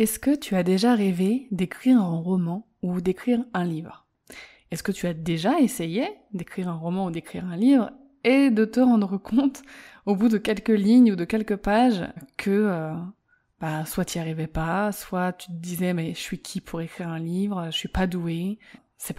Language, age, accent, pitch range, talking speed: French, 20-39, French, 180-235 Hz, 205 wpm